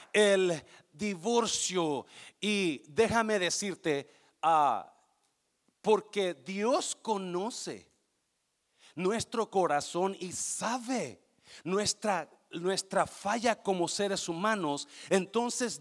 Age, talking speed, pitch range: 40-59, 75 wpm, 160-210 Hz